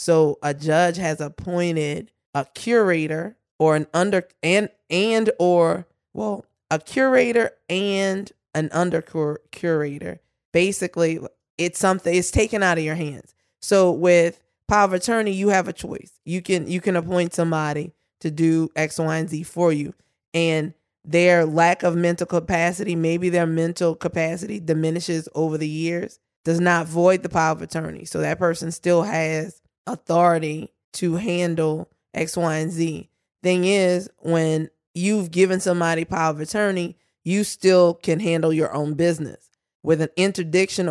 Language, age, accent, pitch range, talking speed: English, 20-39, American, 160-185 Hz, 155 wpm